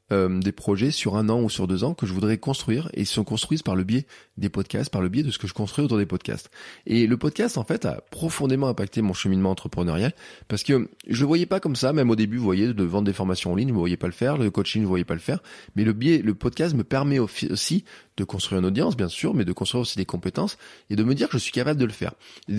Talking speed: 285 wpm